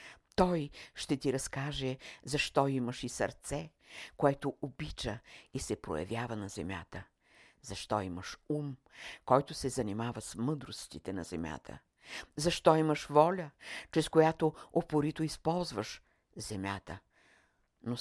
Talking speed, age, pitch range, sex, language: 115 wpm, 50-69, 110-150 Hz, female, Bulgarian